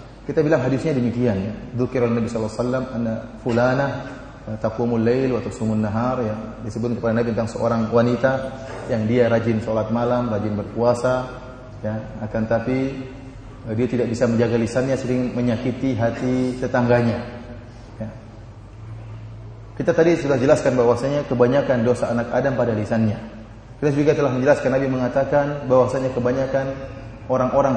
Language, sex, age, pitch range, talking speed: Indonesian, male, 30-49, 115-145 Hz, 130 wpm